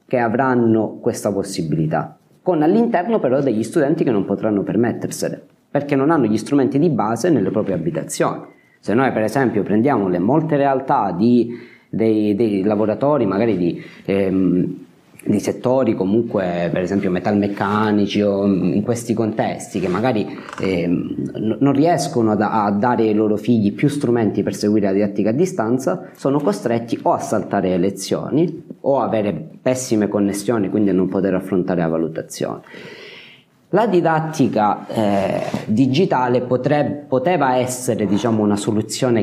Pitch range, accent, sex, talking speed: 100-125 Hz, native, male, 145 wpm